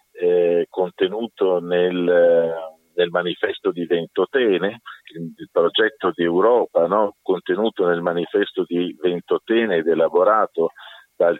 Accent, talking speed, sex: native, 105 wpm, male